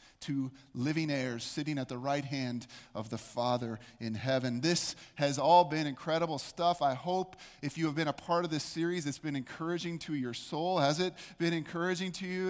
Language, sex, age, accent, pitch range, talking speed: English, male, 30-49, American, 145-185 Hz, 200 wpm